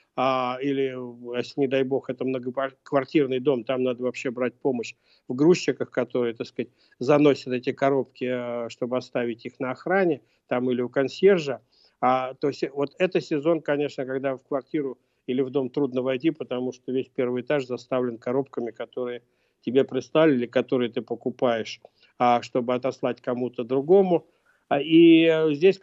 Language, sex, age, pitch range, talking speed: Russian, male, 50-69, 130-150 Hz, 145 wpm